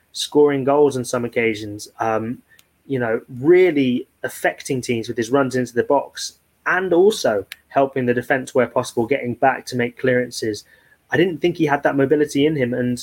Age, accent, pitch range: 20-39, British, 120-135 Hz